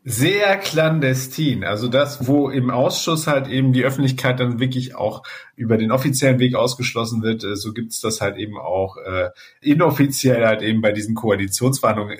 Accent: German